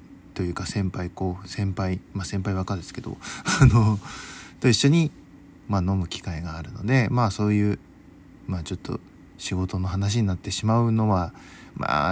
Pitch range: 100-160 Hz